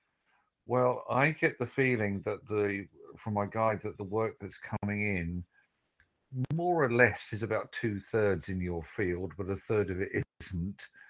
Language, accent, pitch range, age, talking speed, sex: English, British, 95-115 Hz, 50-69, 170 wpm, male